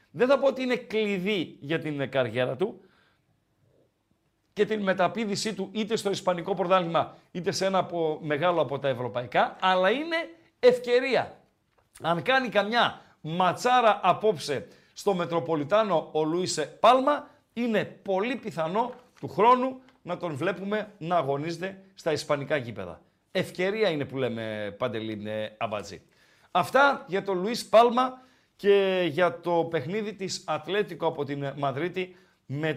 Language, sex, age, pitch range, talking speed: Greek, male, 50-69, 155-215 Hz, 135 wpm